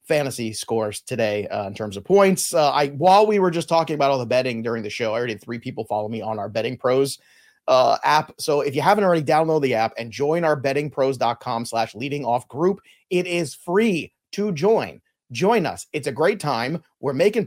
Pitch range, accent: 120-175 Hz, American